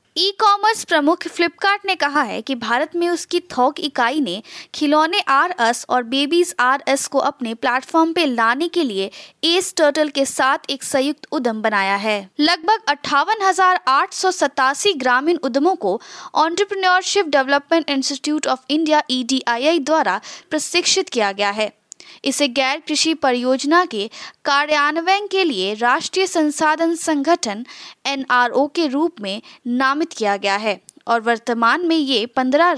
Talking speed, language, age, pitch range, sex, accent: 140 wpm, Hindi, 20-39, 260-340 Hz, female, native